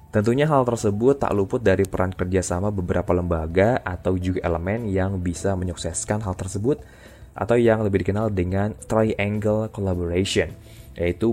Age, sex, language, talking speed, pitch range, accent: 20-39, male, Indonesian, 140 wpm, 90-115 Hz, native